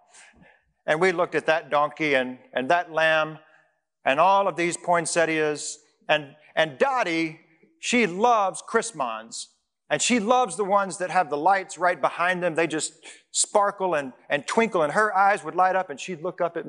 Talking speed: 180 wpm